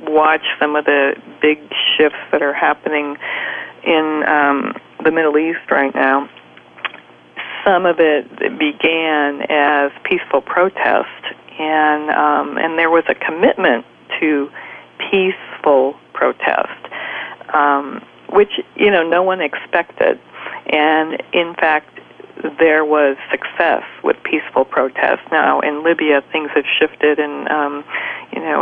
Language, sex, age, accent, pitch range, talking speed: English, female, 50-69, American, 145-165 Hz, 125 wpm